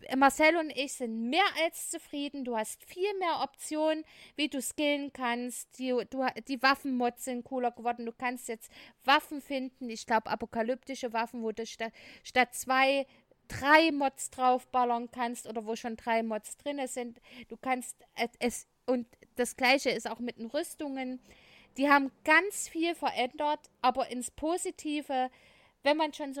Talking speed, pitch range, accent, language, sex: 160 wpm, 230-280 Hz, German, German, female